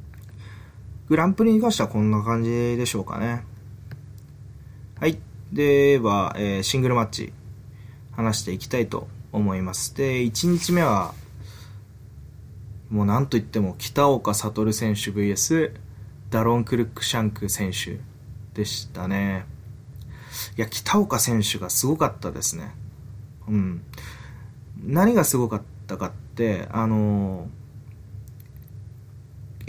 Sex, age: male, 20-39